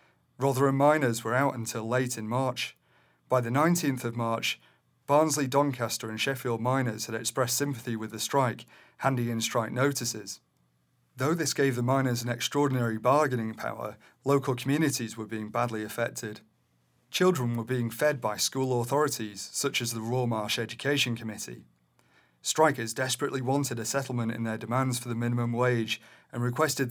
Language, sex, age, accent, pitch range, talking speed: English, male, 30-49, British, 110-130 Hz, 160 wpm